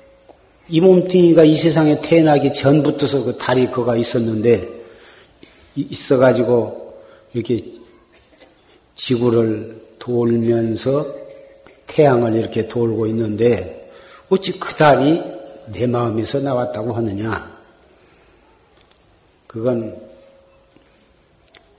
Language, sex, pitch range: Korean, male, 115-150 Hz